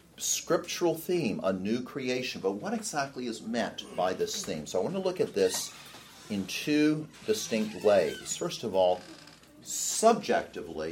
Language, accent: English, American